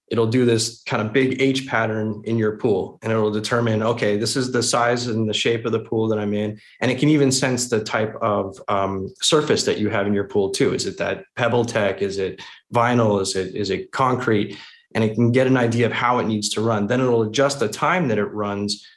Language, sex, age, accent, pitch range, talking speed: English, male, 20-39, American, 105-130 Hz, 250 wpm